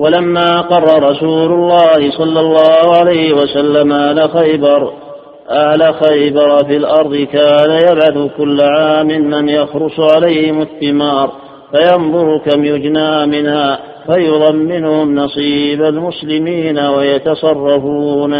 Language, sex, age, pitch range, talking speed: Arabic, male, 50-69, 145-155 Hz, 100 wpm